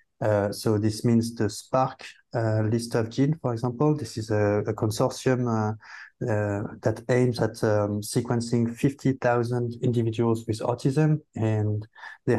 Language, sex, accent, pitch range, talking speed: English, male, French, 110-125 Hz, 145 wpm